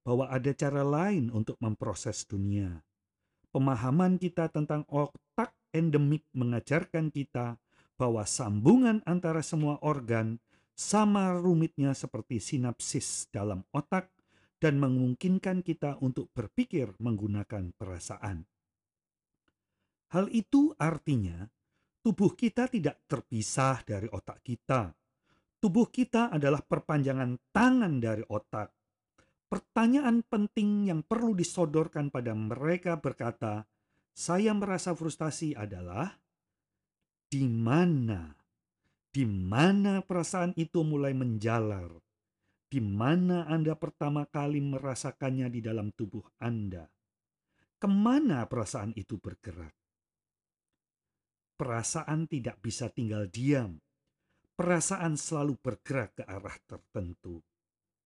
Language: Indonesian